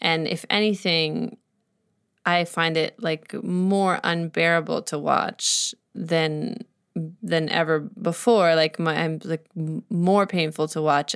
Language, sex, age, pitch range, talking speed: English, female, 20-39, 165-210 Hz, 125 wpm